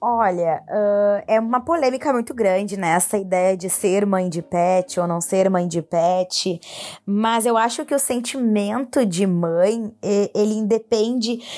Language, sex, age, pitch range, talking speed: Portuguese, female, 20-39, 185-235 Hz, 165 wpm